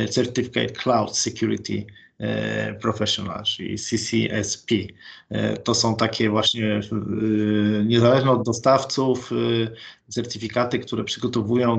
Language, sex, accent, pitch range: Polish, male, native, 105-120 Hz